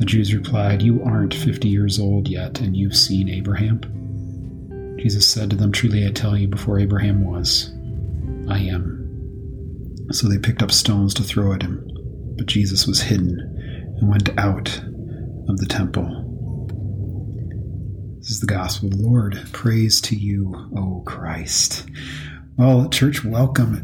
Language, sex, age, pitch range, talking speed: English, male, 40-59, 100-125 Hz, 150 wpm